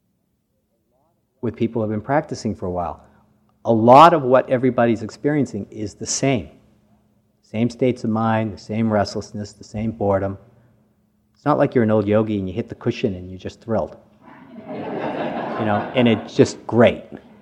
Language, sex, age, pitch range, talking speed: English, male, 50-69, 100-125 Hz, 170 wpm